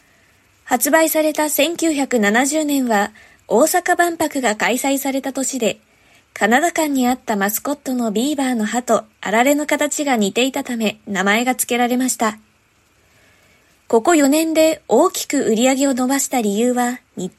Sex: female